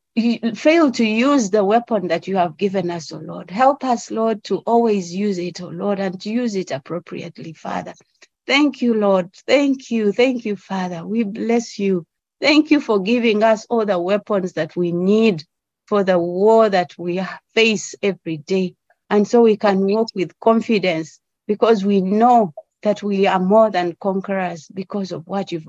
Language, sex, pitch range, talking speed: English, female, 185-230 Hz, 180 wpm